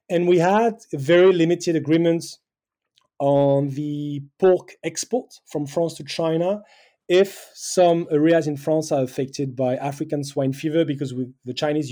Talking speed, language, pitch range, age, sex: 140 wpm, English, 140-175 Hz, 30-49, male